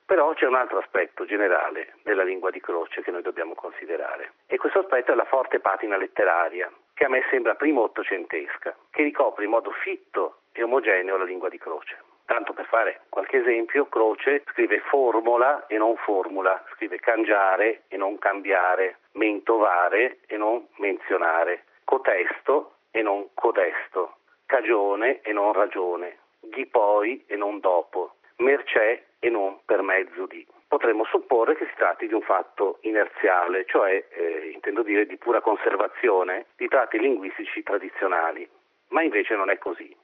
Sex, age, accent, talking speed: male, 40-59, native, 155 wpm